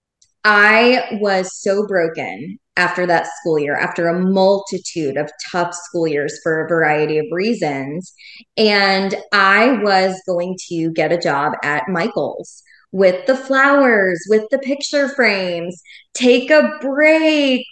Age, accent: 20-39, American